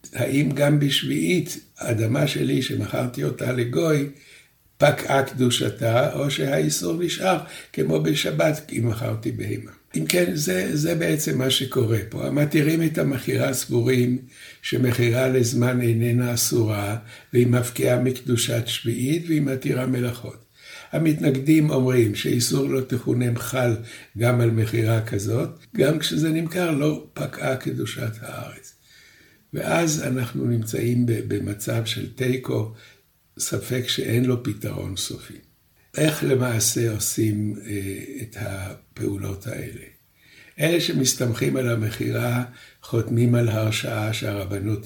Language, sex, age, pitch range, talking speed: Hebrew, male, 60-79, 110-135 Hz, 110 wpm